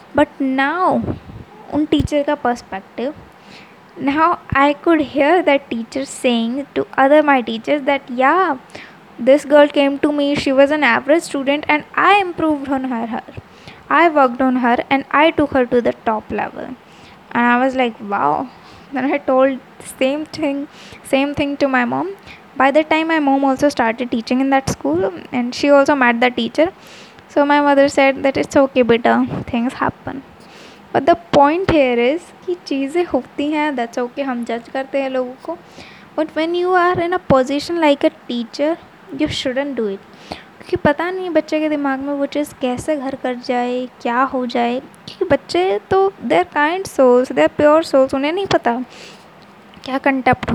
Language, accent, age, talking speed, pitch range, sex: Hindi, native, 20-39, 175 wpm, 250-300 Hz, female